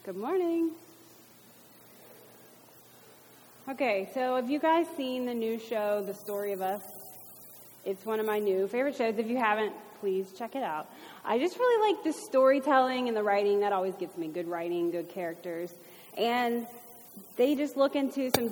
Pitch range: 210-280 Hz